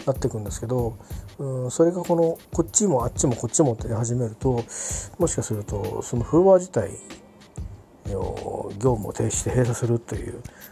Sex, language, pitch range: male, Japanese, 105-155 Hz